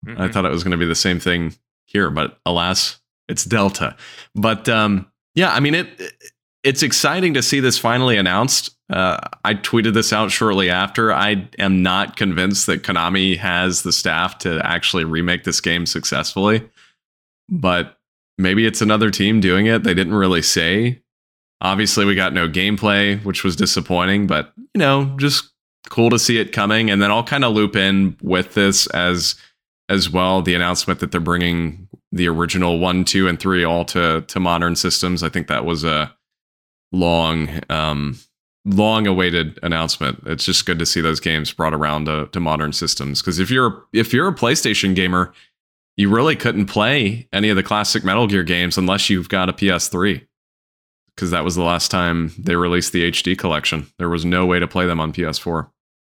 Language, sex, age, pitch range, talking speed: English, male, 20-39, 85-105 Hz, 185 wpm